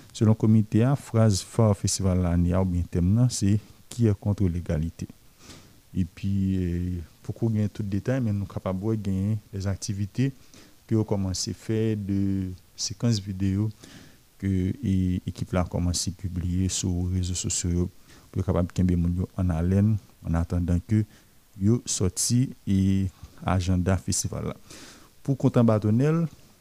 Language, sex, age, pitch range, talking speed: French, male, 50-69, 95-115 Hz, 140 wpm